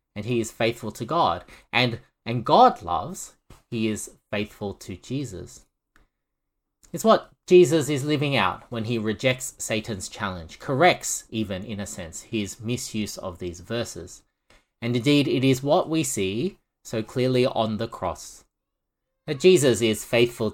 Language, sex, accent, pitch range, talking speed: English, male, Australian, 105-135 Hz, 150 wpm